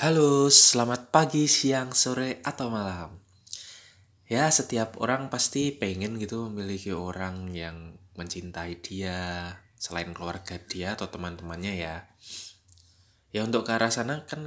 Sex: male